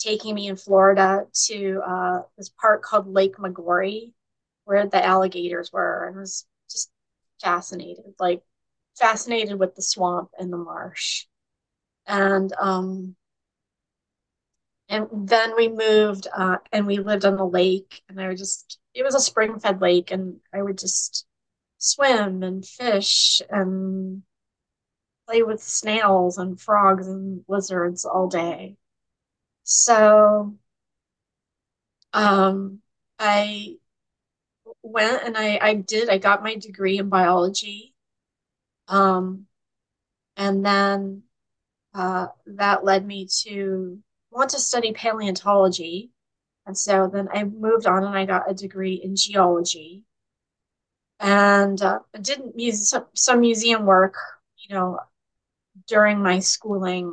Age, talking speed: 30-49, 125 wpm